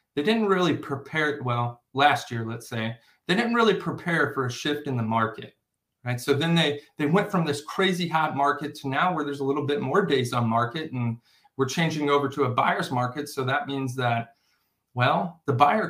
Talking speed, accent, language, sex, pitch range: 210 wpm, American, English, male, 125-160 Hz